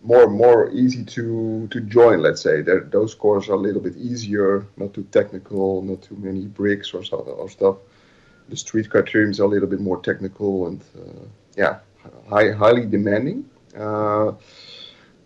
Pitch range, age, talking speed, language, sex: 100-120 Hz, 30-49, 170 wpm, English, male